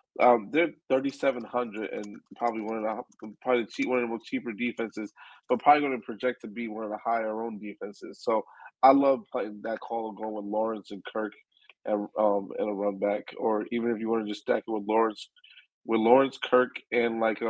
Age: 20-39